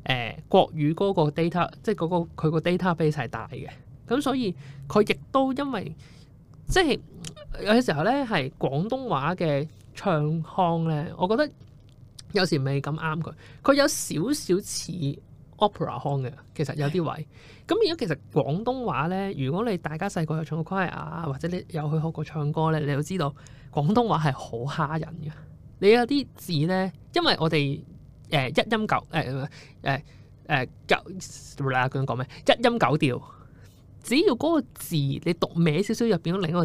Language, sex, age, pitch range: Chinese, male, 20-39, 145-195 Hz